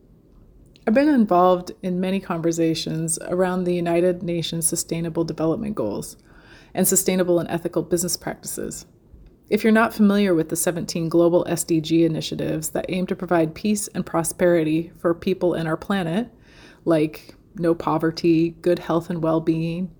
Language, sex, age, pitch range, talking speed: English, female, 30-49, 165-190 Hz, 145 wpm